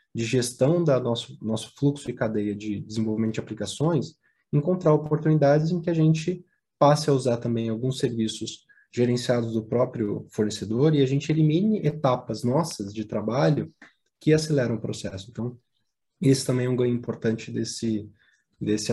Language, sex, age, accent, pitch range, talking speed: English, male, 20-39, Brazilian, 110-140 Hz, 155 wpm